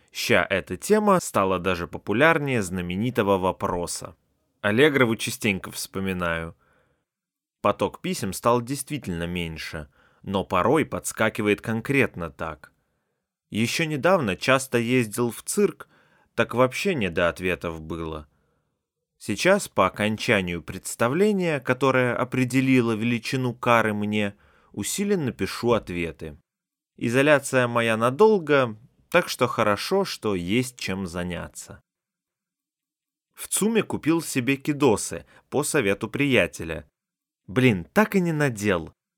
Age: 30-49